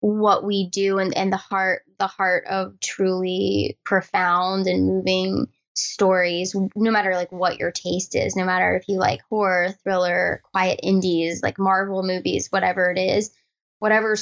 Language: English